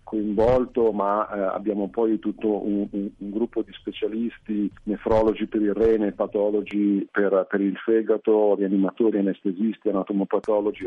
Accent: native